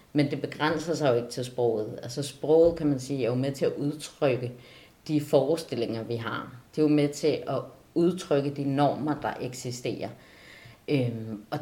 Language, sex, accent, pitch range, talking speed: Danish, female, native, 125-160 Hz, 185 wpm